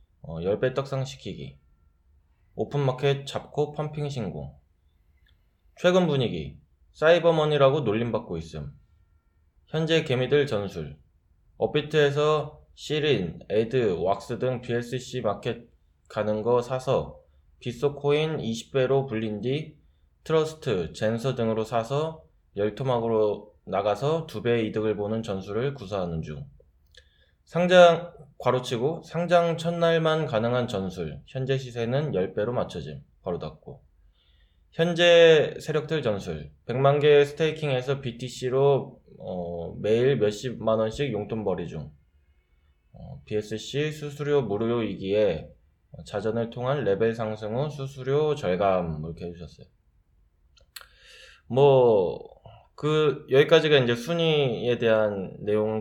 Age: 20-39